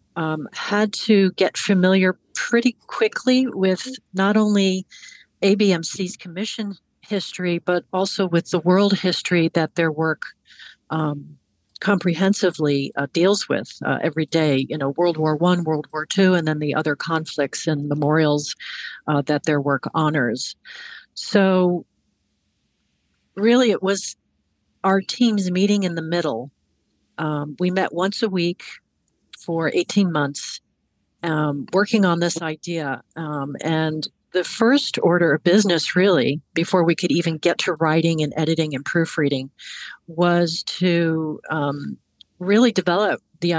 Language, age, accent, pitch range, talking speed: English, 50-69, American, 155-195 Hz, 135 wpm